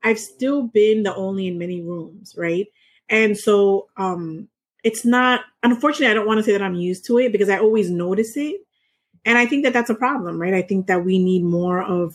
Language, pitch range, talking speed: English, 175-220 Hz, 220 wpm